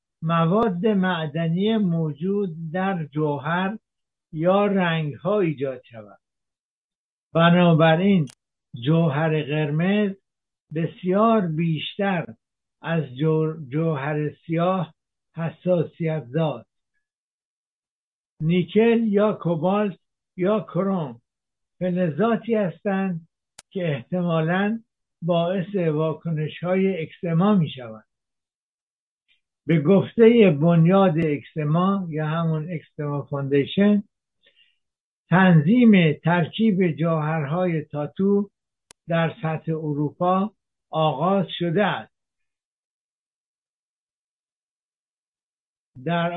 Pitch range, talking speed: 155-190 Hz, 70 wpm